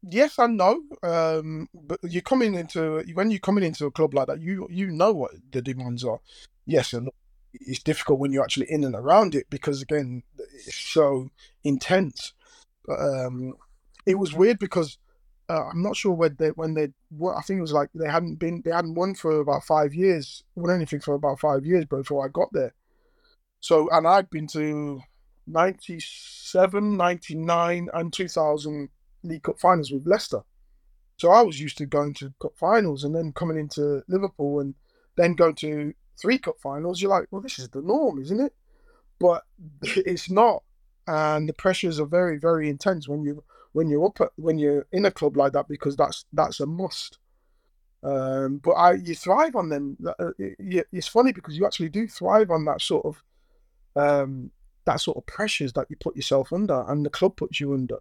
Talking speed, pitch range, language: 195 wpm, 145-190 Hz, English